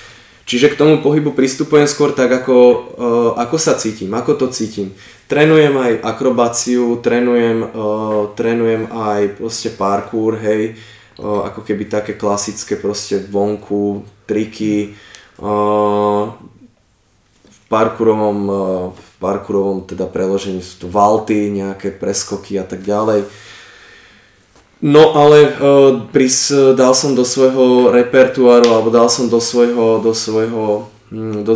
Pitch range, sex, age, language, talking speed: 105-115 Hz, male, 20-39, Slovak, 110 wpm